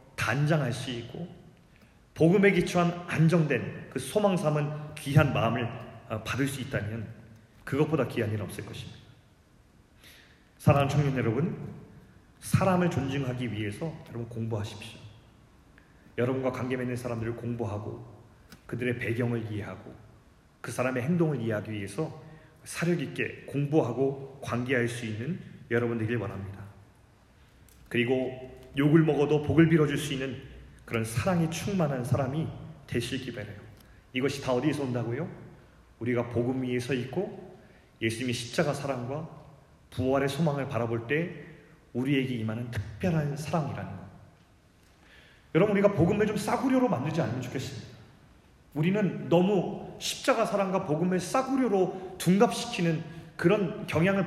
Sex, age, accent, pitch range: male, 30-49, native, 115-160 Hz